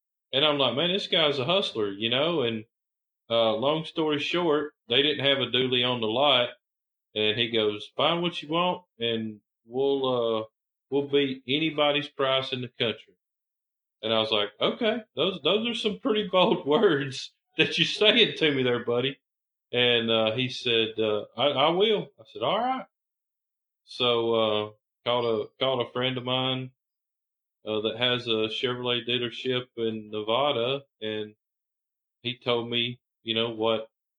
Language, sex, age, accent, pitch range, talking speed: English, male, 40-59, American, 110-135 Hz, 170 wpm